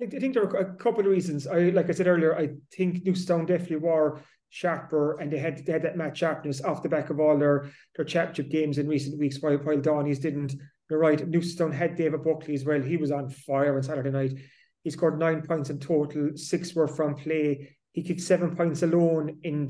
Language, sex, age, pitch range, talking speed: English, male, 30-49, 150-175 Hz, 225 wpm